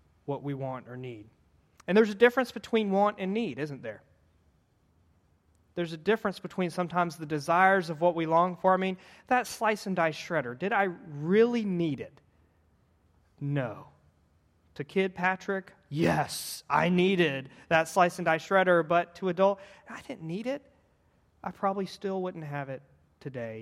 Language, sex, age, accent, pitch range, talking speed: English, male, 30-49, American, 115-175 Hz, 165 wpm